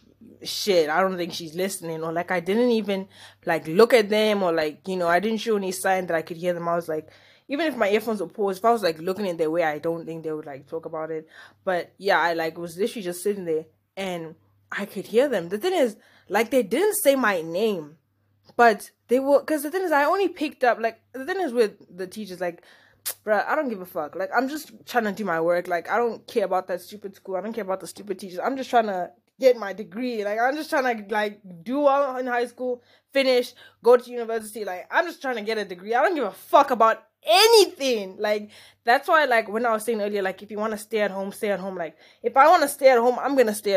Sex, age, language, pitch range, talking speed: female, 20-39, English, 175-245 Hz, 265 wpm